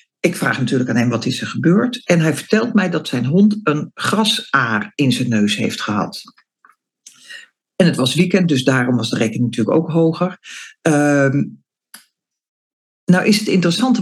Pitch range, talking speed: 145-220 Hz, 170 wpm